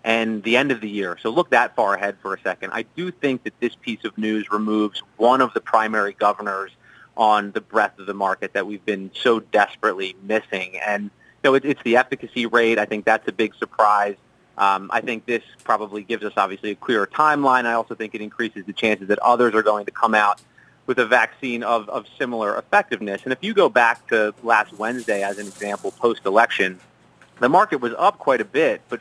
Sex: male